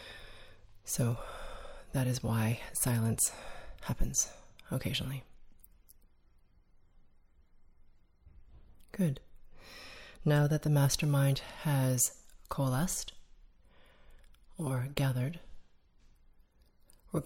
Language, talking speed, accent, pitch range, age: English, 60 wpm, American, 90-150 Hz, 30-49